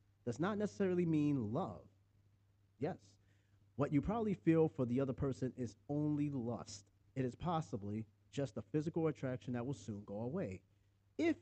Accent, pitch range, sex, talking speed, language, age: American, 105-145 Hz, male, 160 wpm, English, 30-49